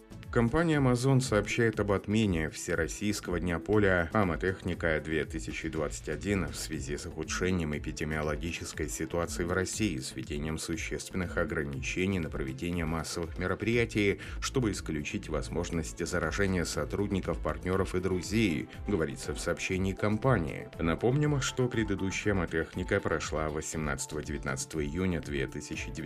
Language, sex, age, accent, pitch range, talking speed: Russian, male, 30-49, native, 80-105 Hz, 105 wpm